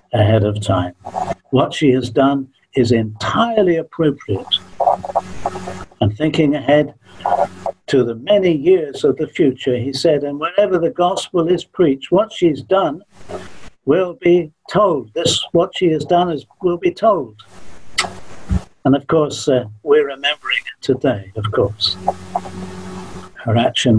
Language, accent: English, British